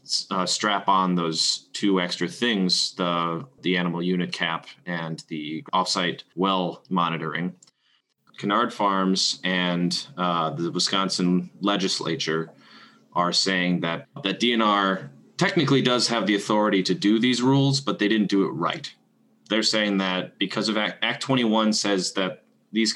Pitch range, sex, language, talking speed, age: 90-105 Hz, male, English, 145 wpm, 20-39